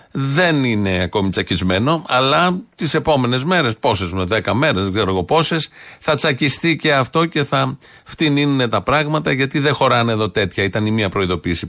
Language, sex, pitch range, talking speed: Greek, male, 95-135 Hz, 170 wpm